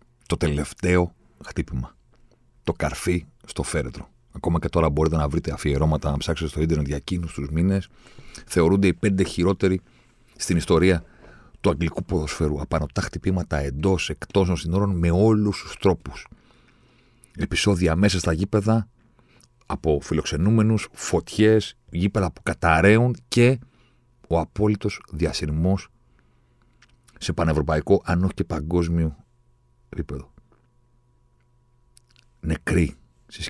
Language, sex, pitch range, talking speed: Greek, male, 75-110 Hz, 115 wpm